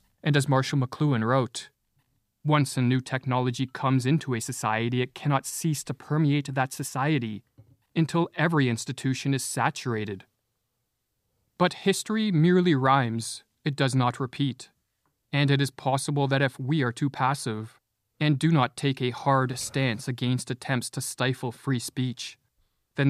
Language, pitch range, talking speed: English, 125-140 Hz, 150 wpm